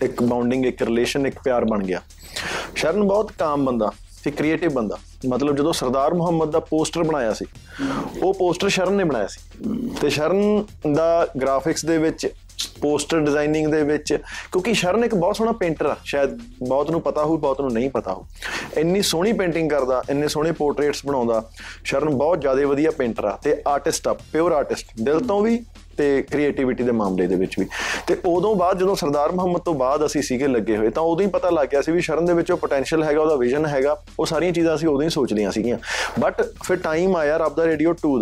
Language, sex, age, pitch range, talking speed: Punjabi, male, 30-49, 135-175 Hz, 200 wpm